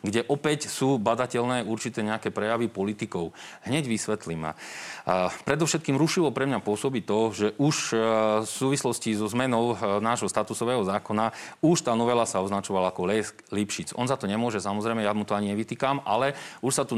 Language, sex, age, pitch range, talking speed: Slovak, male, 40-59, 110-135 Hz, 165 wpm